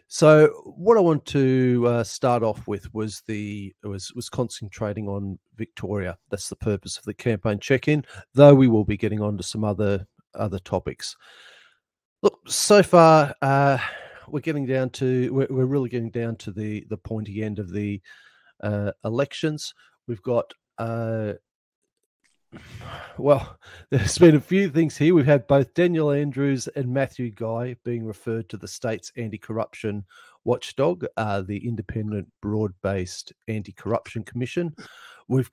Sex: male